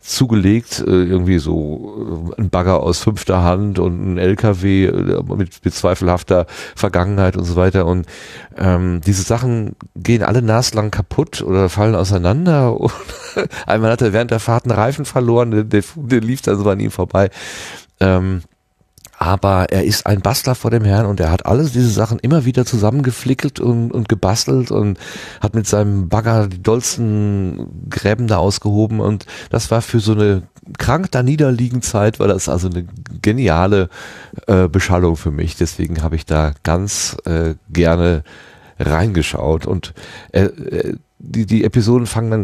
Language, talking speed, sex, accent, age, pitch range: German, 160 wpm, male, German, 40-59, 90-115 Hz